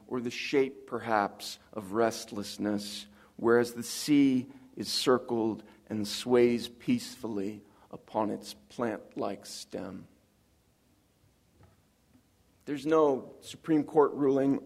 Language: English